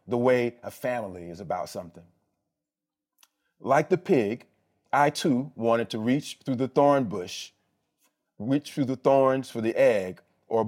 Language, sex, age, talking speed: English, male, 40-59, 150 wpm